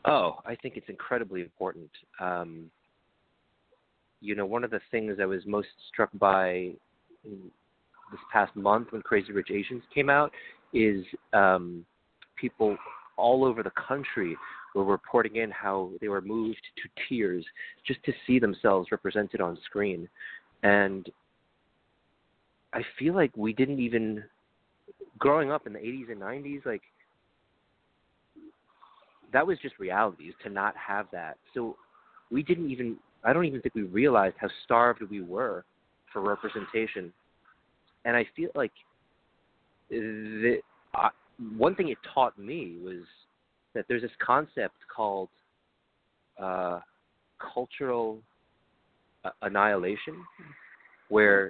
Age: 30-49